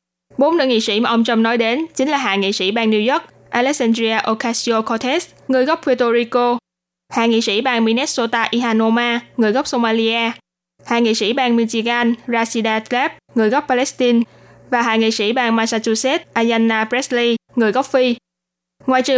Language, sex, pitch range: Vietnamese, female, 215-250 Hz